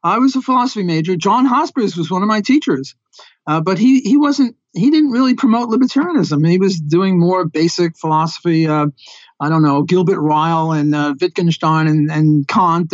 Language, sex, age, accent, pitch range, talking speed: English, male, 50-69, American, 165-225 Hz, 195 wpm